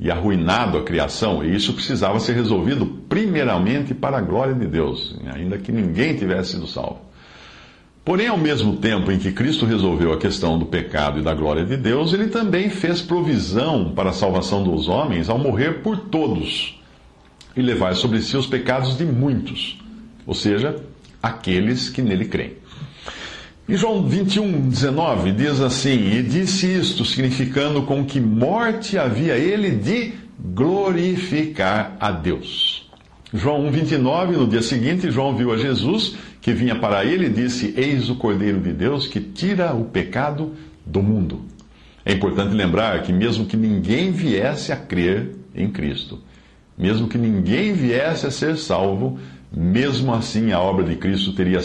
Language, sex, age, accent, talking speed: English, male, 60-79, Brazilian, 160 wpm